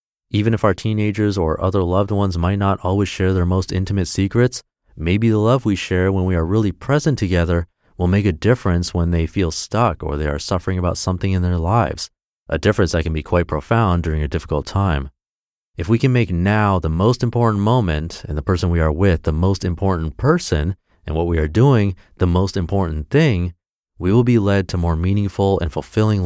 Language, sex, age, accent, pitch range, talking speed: English, male, 30-49, American, 80-105 Hz, 210 wpm